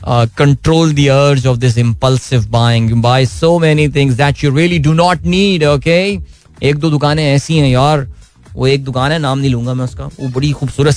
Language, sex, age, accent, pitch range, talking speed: Hindi, male, 20-39, native, 120-155 Hz, 110 wpm